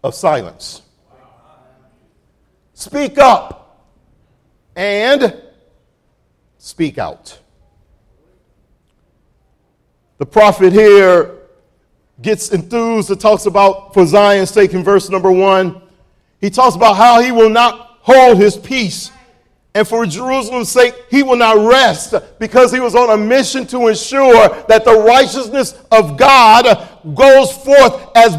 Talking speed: 120 wpm